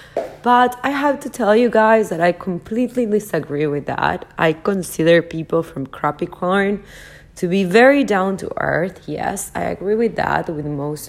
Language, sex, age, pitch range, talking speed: English, female, 30-49, 150-195 Hz, 170 wpm